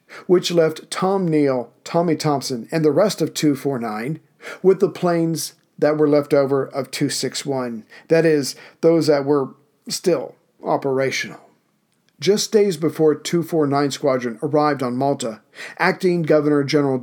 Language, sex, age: English, male, 50-69